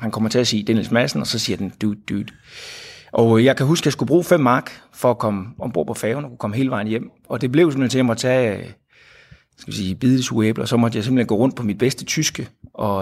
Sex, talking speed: male, 270 wpm